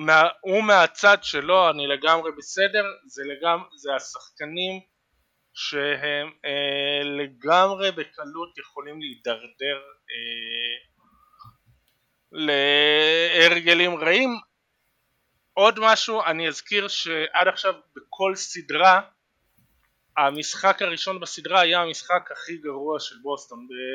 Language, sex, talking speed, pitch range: Hebrew, male, 90 wpm, 150-190 Hz